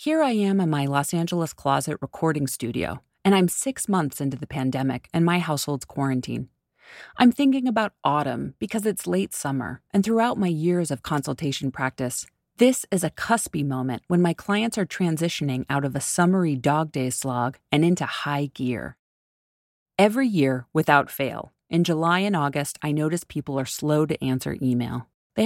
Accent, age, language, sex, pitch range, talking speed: American, 30-49, English, female, 135-195 Hz, 175 wpm